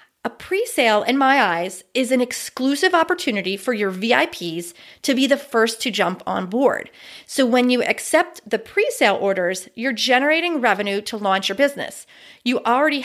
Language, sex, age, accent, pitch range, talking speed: English, female, 40-59, American, 220-275 Hz, 165 wpm